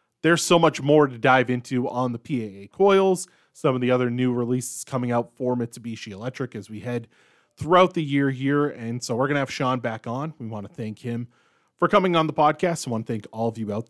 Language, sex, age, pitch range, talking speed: English, male, 20-39, 115-150 Hz, 240 wpm